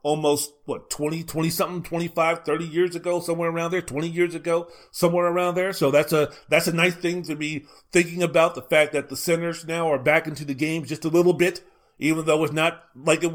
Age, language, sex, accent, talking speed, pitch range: 40-59, English, male, American, 225 wpm, 145-175 Hz